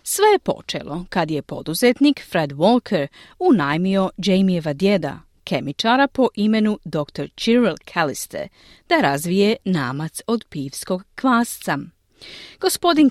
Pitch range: 180-275 Hz